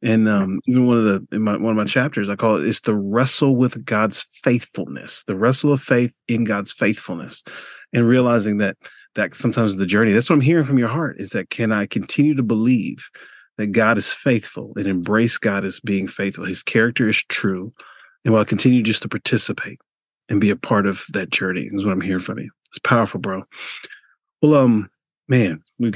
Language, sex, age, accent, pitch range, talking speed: English, male, 40-59, American, 100-120 Hz, 210 wpm